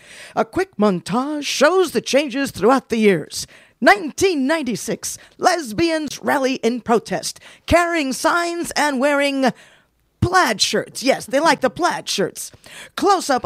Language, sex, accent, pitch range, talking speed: English, female, American, 210-325 Hz, 125 wpm